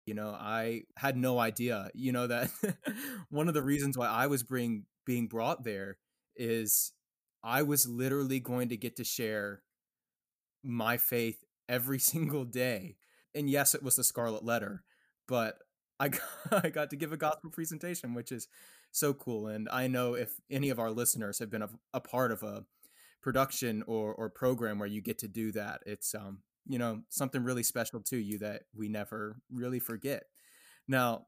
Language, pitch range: English, 110-135 Hz